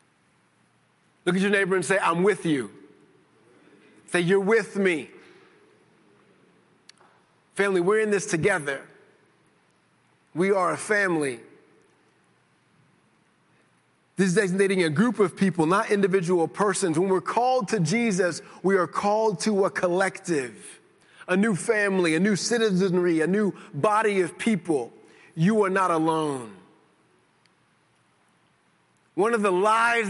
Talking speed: 125 wpm